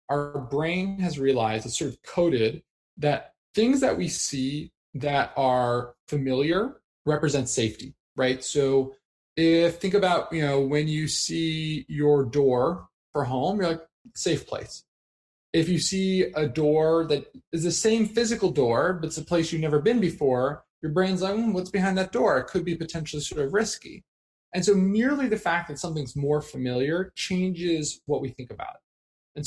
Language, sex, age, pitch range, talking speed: English, male, 20-39, 135-185 Hz, 175 wpm